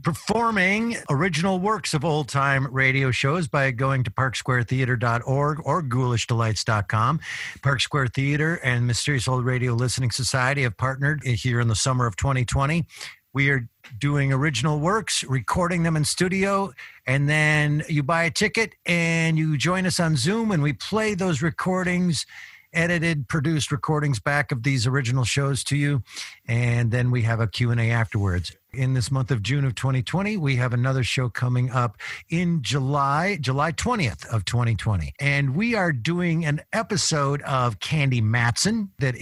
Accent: American